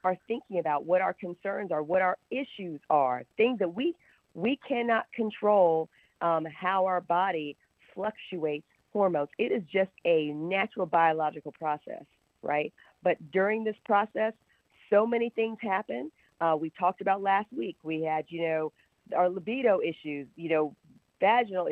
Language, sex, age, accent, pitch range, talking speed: English, female, 40-59, American, 160-210 Hz, 150 wpm